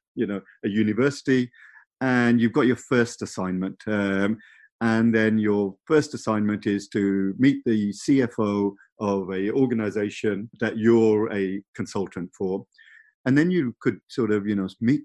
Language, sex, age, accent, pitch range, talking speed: English, male, 50-69, British, 100-125 Hz, 150 wpm